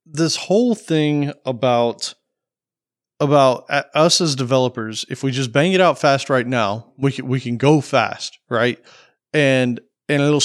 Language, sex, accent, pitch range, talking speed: English, male, American, 125-170 Hz, 150 wpm